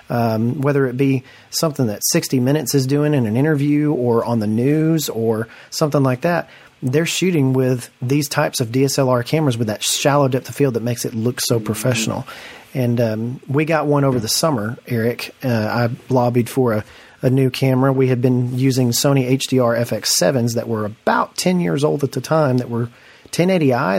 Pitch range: 120-145 Hz